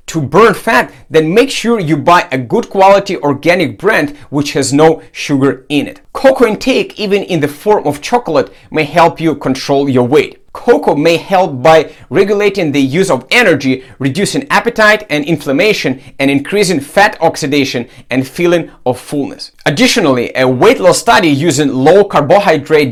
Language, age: English, 30-49